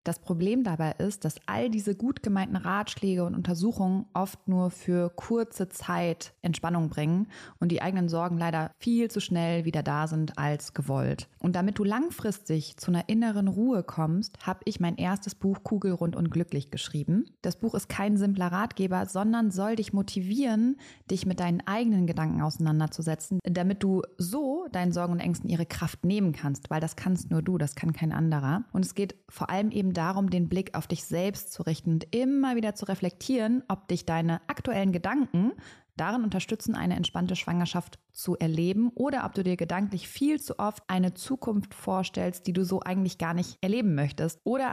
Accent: German